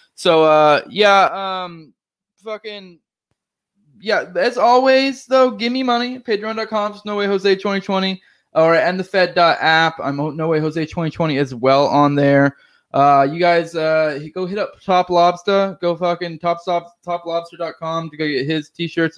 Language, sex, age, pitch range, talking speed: English, male, 20-39, 150-185 Hz, 155 wpm